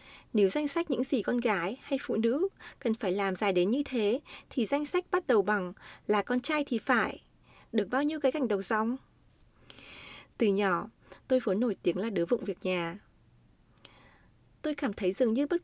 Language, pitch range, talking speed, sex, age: Vietnamese, 210-285 Hz, 200 wpm, female, 20-39